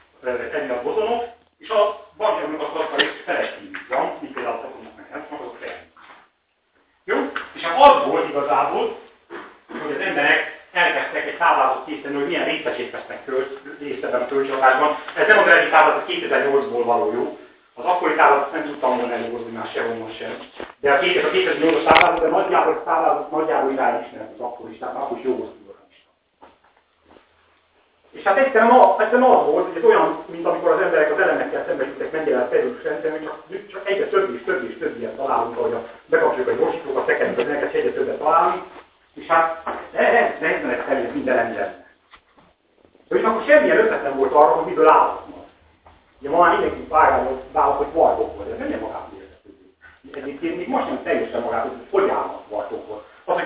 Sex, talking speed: male, 175 wpm